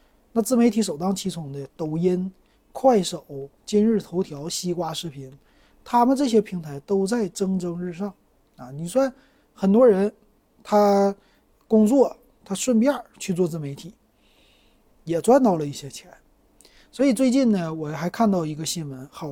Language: Chinese